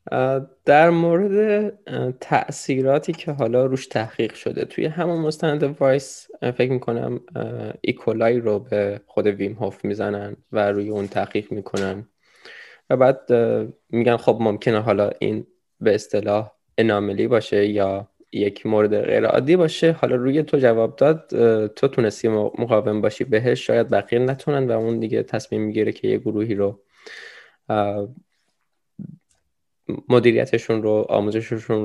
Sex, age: male, 10-29